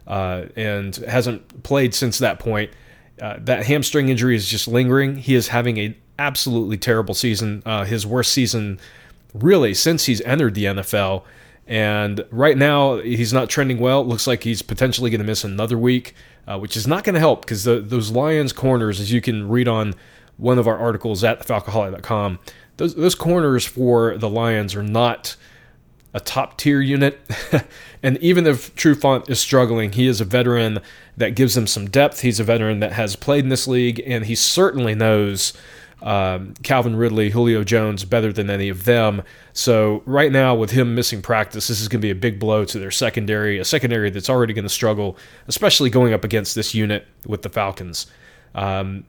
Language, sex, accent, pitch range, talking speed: English, male, American, 105-130 Hz, 190 wpm